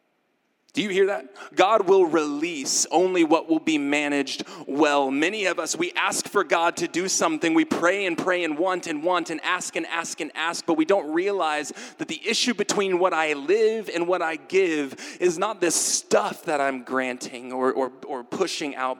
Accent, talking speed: American, 200 wpm